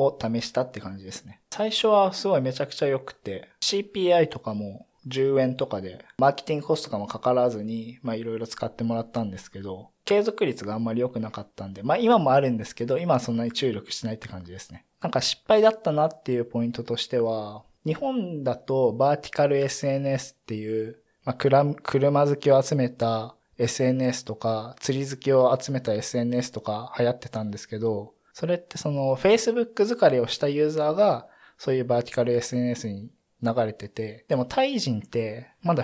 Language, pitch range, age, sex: Japanese, 115-150 Hz, 20-39, male